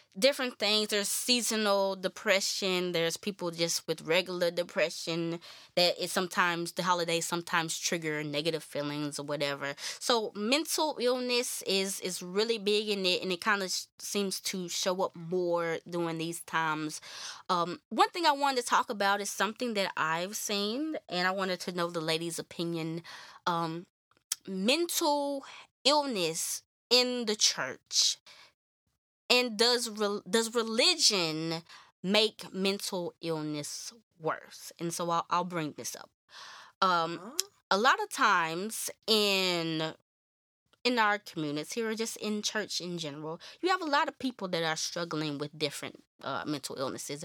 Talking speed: 150 wpm